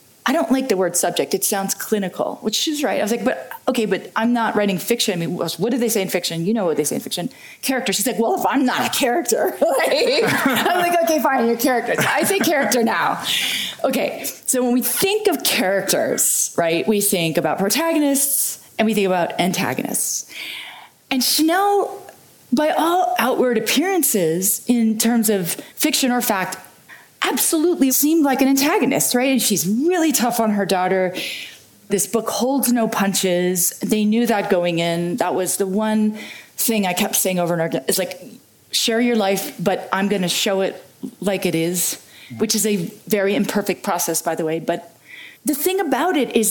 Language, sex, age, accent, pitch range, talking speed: English, female, 30-49, American, 185-255 Hz, 190 wpm